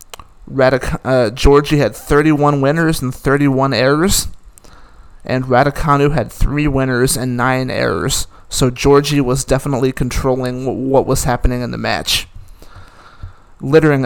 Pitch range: 120-145 Hz